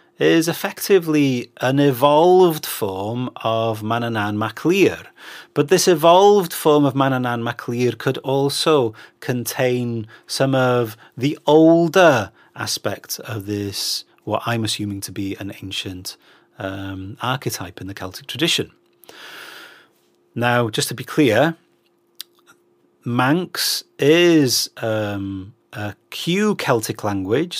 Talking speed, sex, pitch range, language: 105 wpm, male, 105-135 Hz, English